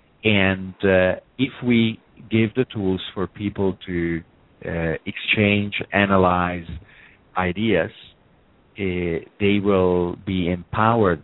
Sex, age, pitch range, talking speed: male, 50-69, 85-100 Hz, 100 wpm